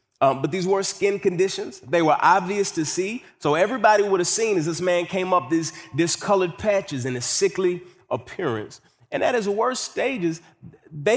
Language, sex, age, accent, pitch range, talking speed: English, male, 30-49, American, 135-190 Hz, 185 wpm